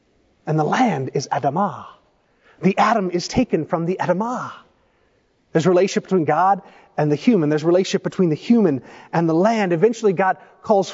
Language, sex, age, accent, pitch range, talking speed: English, male, 30-49, American, 165-230 Hz, 175 wpm